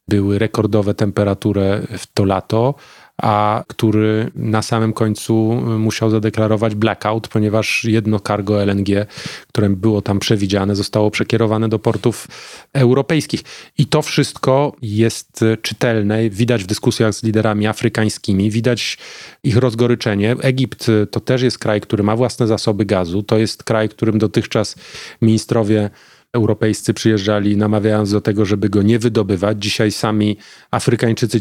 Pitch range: 105-120 Hz